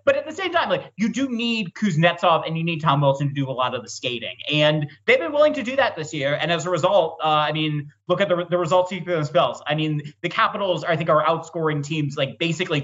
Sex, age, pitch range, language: male, 30-49, 135-180 Hz, English